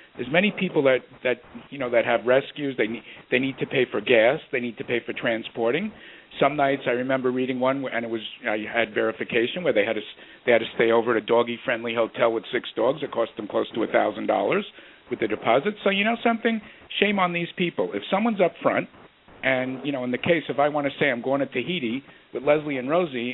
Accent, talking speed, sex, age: American, 235 wpm, male, 50-69